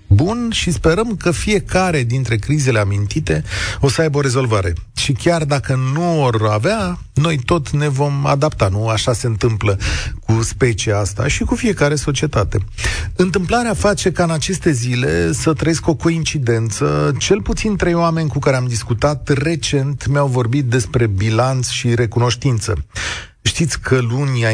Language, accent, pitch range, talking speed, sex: Romanian, native, 115-150 Hz, 155 wpm, male